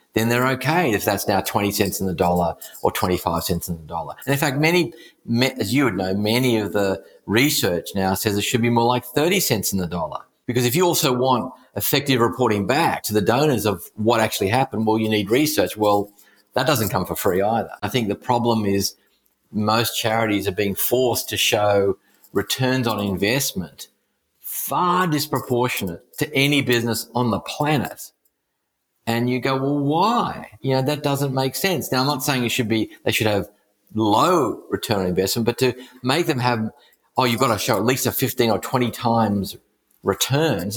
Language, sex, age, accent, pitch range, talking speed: English, male, 40-59, Australian, 105-135 Hz, 195 wpm